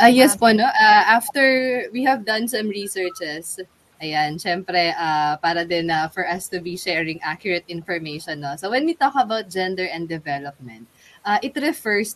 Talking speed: 185 wpm